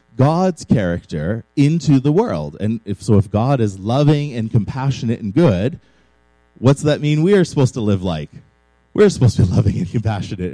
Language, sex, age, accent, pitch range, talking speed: English, male, 30-49, American, 100-140 Hz, 180 wpm